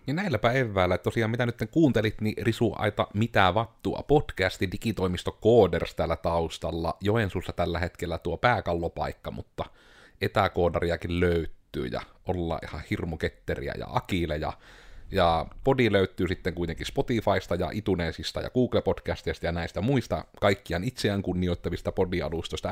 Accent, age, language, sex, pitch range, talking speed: native, 30-49, Finnish, male, 85-110 Hz, 130 wpm